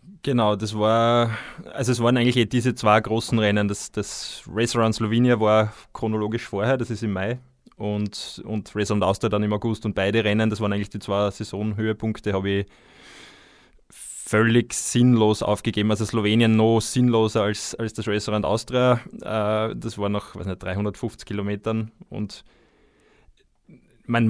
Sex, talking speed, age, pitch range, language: male, 155 wpm, 20-39, 105-115 Hz, German